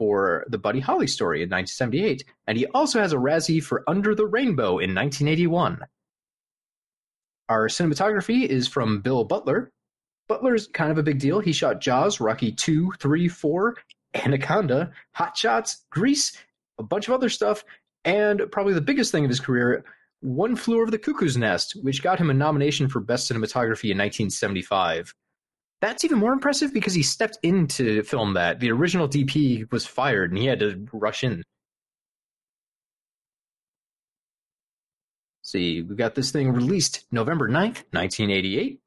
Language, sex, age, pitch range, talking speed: English, male, 30-49, 120-195 Hz, 155 wpm